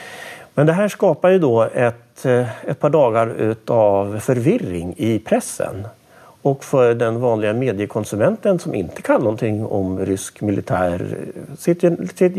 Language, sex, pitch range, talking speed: Swedish, male, 110-160 Hz, 130 wpm